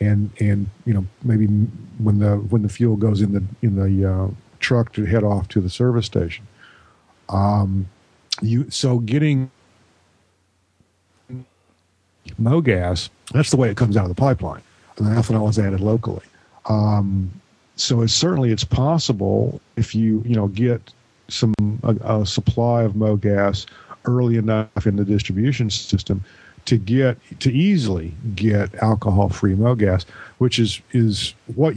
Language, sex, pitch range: English, male, 100-115 Hz